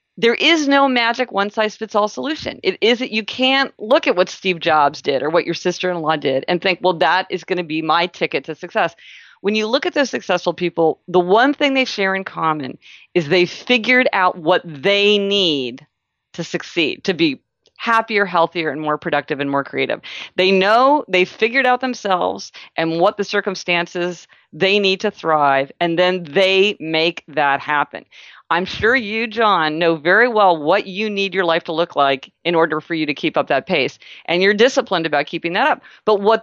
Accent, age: American, 40-59